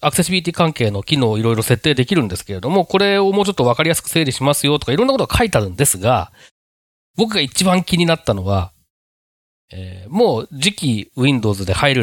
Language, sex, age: Japanese, male, 40-59